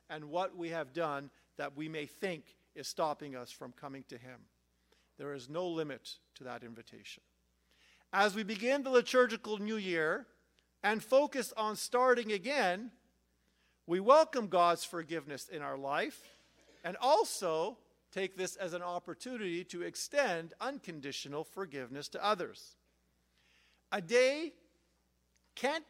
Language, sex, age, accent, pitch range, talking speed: English, male, 50-69, American, 140-230 Hz, 135 wpm